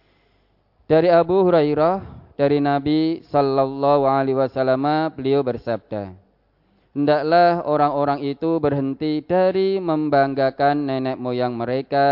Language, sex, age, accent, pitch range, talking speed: Indonesian, male, 20-39, native, 120-150 Hz, 95 wpm